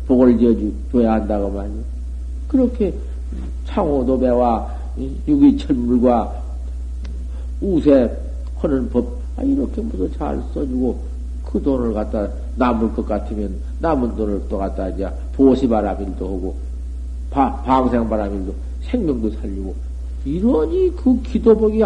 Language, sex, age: Korean, male, 50-69